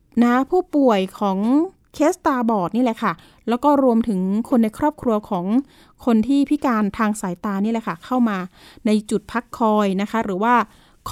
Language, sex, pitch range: Thai, female, 210-265 Hz